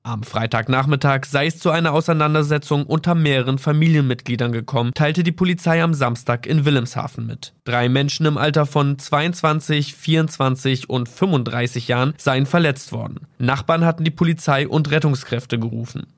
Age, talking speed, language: 20-39, 145 wpm, German